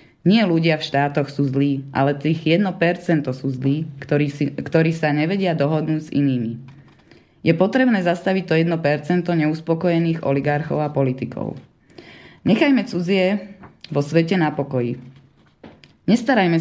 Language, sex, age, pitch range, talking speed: Slovak, female, 20-39, 140-175 Hz, 125 wpm